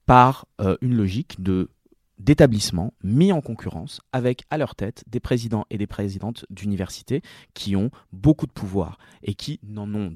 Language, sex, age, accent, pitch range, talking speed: French, male, 20-39, French, 100-130 Hz, 160 wpm